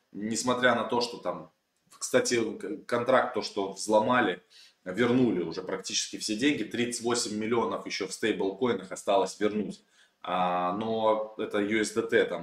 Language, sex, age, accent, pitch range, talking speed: Russian, male, 20-39, native, 100-120 Hz, 120 wpm